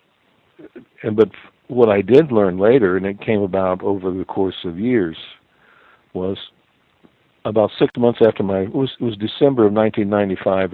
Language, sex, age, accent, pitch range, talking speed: English, male, 60-79, American, 85-100 Hz, 160 wpm